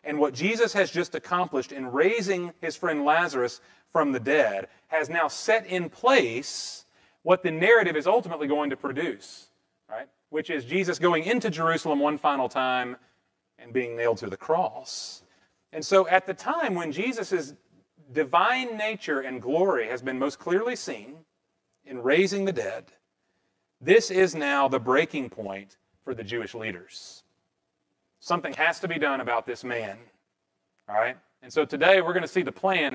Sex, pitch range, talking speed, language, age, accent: male, 110-170 Hz, 170 wpm, English, 40-59, American